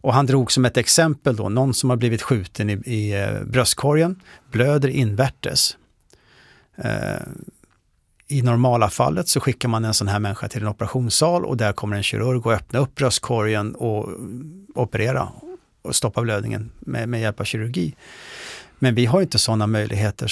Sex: male